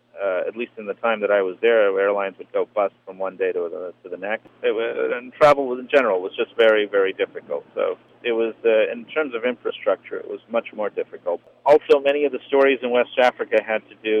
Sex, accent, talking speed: male, American, 240 wpm